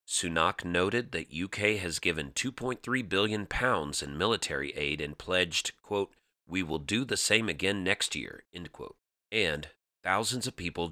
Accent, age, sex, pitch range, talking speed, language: American, 40-59, male, 85-105 Hz, 160 wpm, English